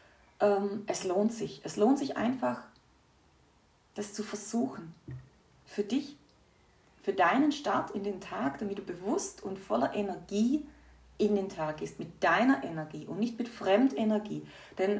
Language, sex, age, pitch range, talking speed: German, female, 30-49, 195-250 Hz, 145 wpm